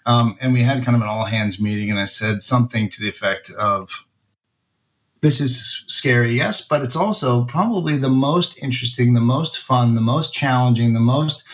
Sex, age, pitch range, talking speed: male, 30-49, 115-140 Hz, 190 wpm